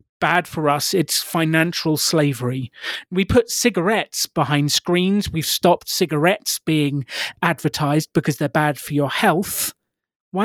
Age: 30-49